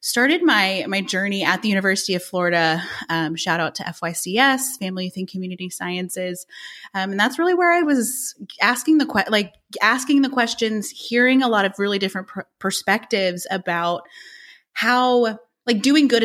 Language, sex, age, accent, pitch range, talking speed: English, female, 20-39, American, 180-245 Hz, 170 wpm